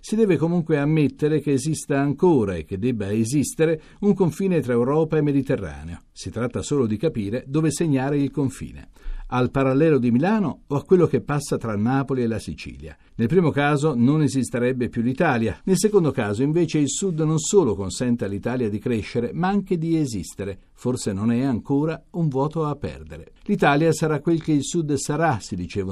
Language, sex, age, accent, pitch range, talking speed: Italian, male, 60-79, native, 110-155 Hz, 185 wpm